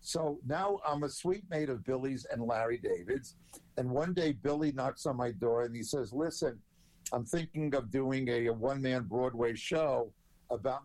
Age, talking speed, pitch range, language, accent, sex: 50-69, 175 wpm, 125-155 Hz, English, American, male